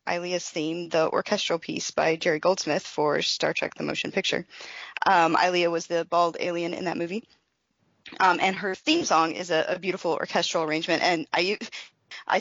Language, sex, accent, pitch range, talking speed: English, female, American, 170-205 Hz, 180 wpm